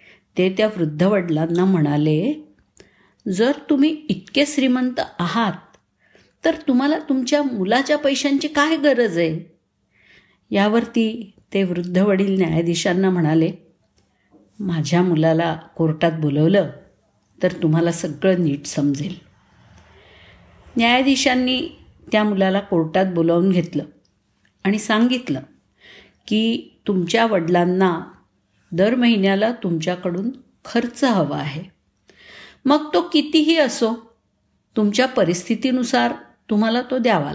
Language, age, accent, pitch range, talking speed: Marathi, 50-69, native, 170-245 Hz, 90 wpm